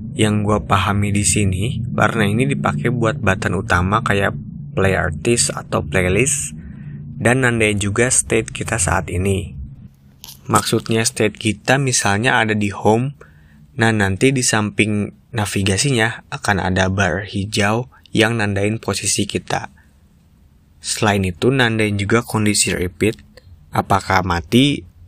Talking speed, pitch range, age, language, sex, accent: 120 wpm, 90-115 Hz, 20-39, Indonesian, male, native